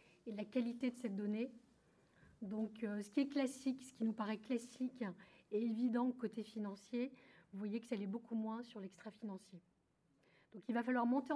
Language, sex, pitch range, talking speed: French, female, 195-235 Hz, 190 wpm